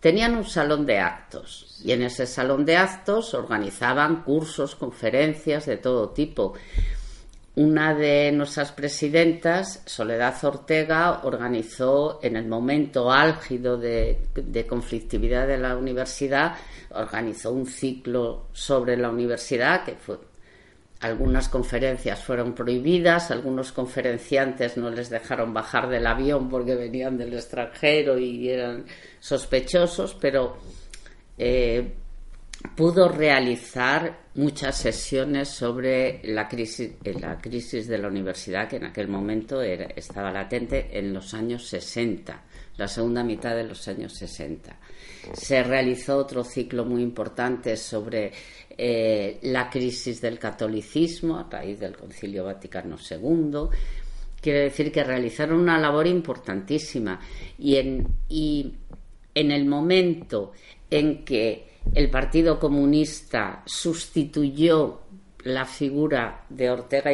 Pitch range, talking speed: 120-150 Hz, 115 wpm